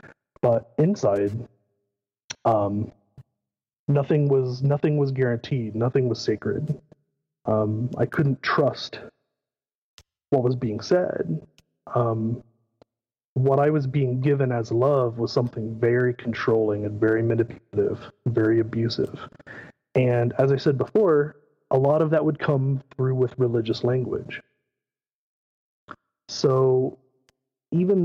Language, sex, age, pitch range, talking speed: English, male, 30-49, 120-150 Hz, 115 wpm